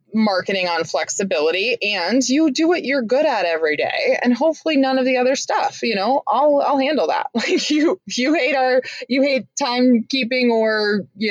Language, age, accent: English, 20-39, American